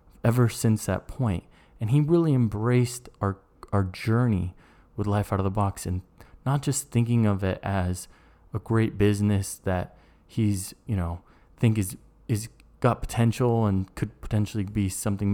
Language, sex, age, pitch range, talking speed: English, male, 20-39, 90-115 Hz, 160 wpm